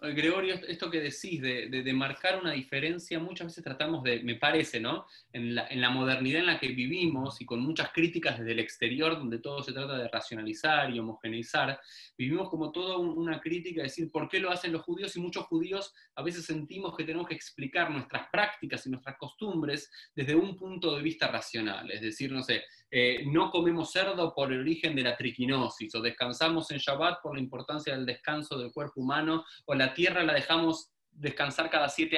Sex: male